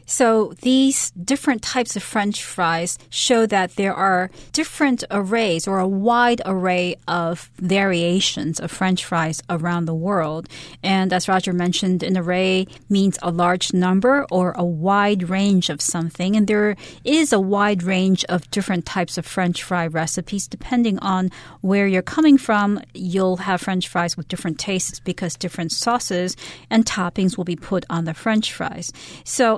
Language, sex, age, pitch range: Chinese, female, 40-59, 180-225 Hz